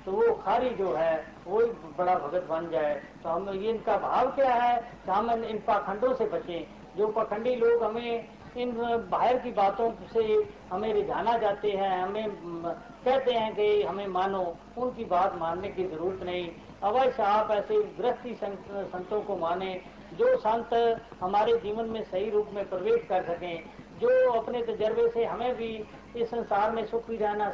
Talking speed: 165 wpm